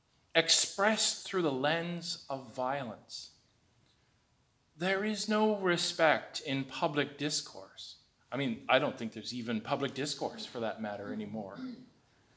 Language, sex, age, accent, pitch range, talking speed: English, male, 40-59, American, 115-175 Hz, 125 wpm